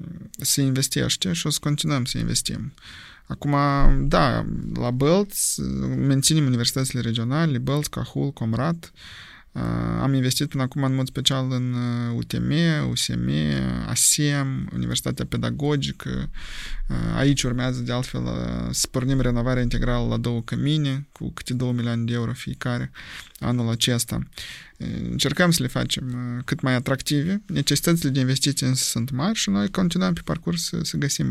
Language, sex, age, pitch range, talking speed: Romanian, male, 20-39, 120-145 Hz, 135 wpm